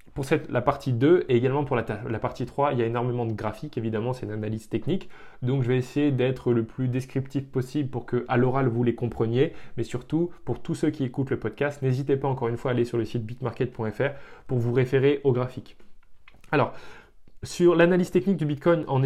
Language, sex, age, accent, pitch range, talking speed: French, male, 20-39, French, 120-150 Hz, 225 wpm